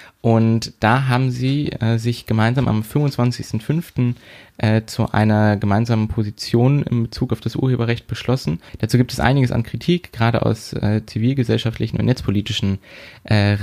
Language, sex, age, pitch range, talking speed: German, male, 20-39, 105-120 Hz, 140 wpm